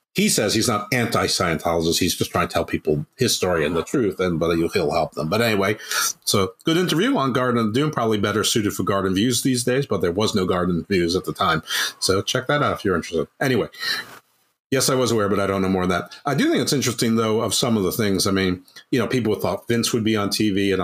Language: English